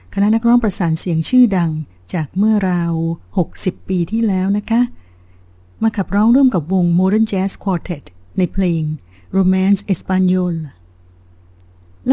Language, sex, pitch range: Thai, female, 160-200 Hz